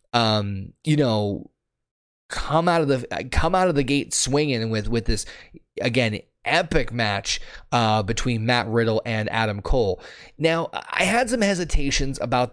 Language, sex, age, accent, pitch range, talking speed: English, male, 20-39, American, 110-135 Hz, 155 wpm